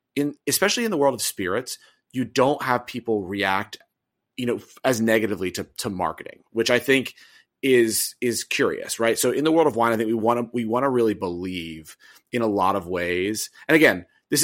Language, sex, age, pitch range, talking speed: English, male, 30-49, 95-125 Hz, 210 wpm